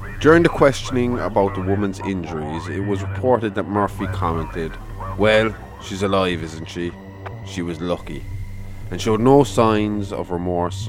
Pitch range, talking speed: 90-105 Hz, 150 wpm